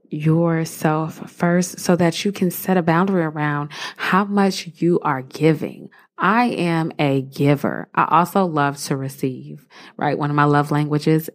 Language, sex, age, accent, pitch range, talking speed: English, female, 20-39, American, 145-180 Hz, 160 wpm